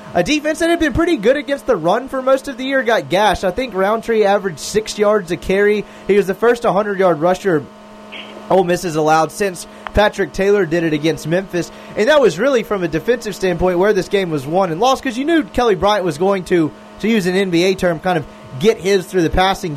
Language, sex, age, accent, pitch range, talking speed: English, male, 20-39, American, 170-210 Hz, 235 wpm